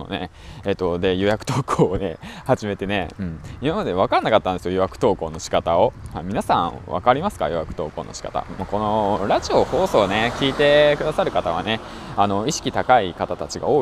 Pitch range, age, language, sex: 90-115 Hz, 20-39, Japanese, male